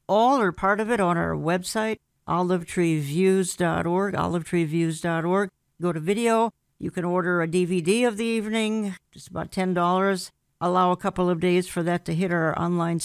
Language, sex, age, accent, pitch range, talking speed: English, female, 60-79, American, 170-200 Hz, 160 wpm